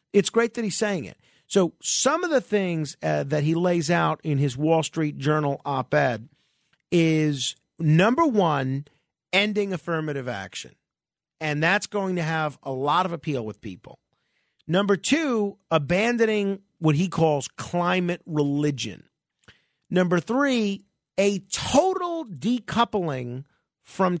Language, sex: English, male